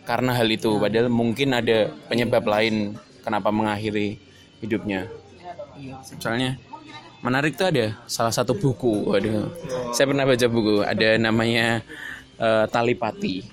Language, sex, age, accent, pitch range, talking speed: Indonesian, male, 20-39, native, 115-140 Hz, 125 wpm